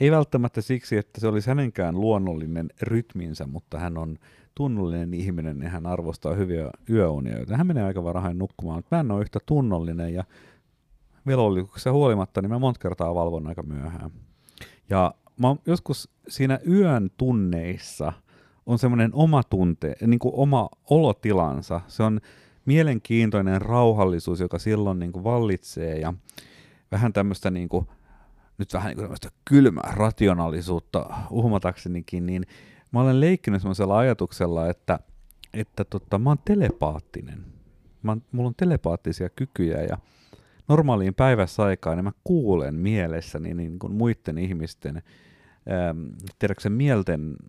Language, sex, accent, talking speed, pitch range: Finnish, male, native, 135 wpm, 85-120 Hz